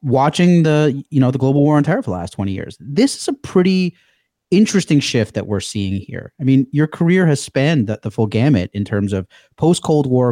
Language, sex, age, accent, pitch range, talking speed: English, male, 30-49, American, 120-175 Hz, 235 wpm